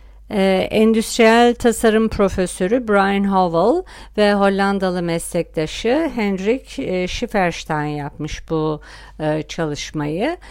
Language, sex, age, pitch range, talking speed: Turkish, female, 60-79, 170-215 Hz, 75 wpm